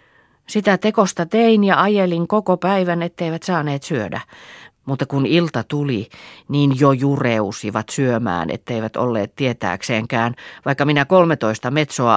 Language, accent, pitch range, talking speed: Finnish, native, 115-160 Hz, 125 wpm